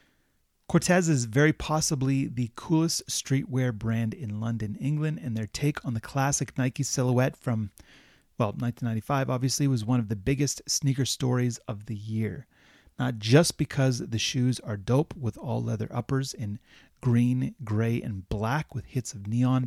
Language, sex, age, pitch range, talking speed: English, male, 30-49, 115-140 Hz, 160 wpm